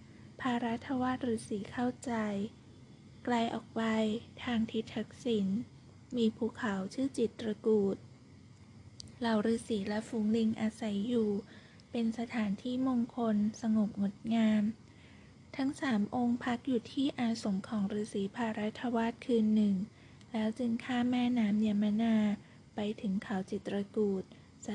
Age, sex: 20-39, female